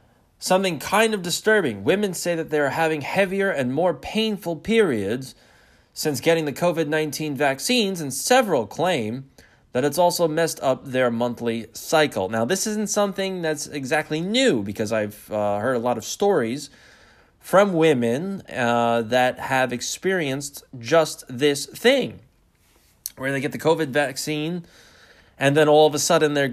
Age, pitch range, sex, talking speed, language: 20-39, 115-170 Hz, male, 150 wpm, English